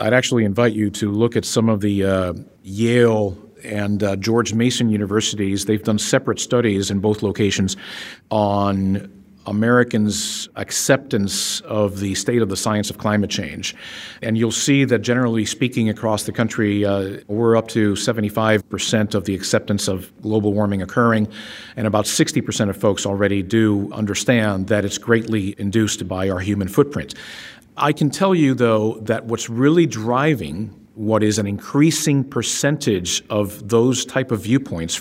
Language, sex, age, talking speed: English, male, 50-69, 160 wpm